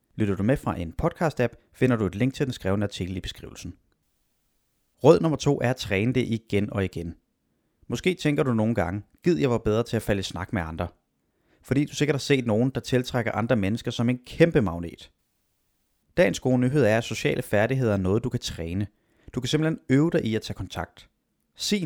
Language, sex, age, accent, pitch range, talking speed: Danish, male, 30-49, native, 100-135 Hz, 215 wpm